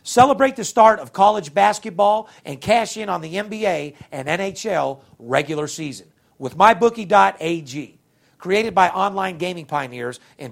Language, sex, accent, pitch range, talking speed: English, male, American, 145-210 Hz, 135 wpm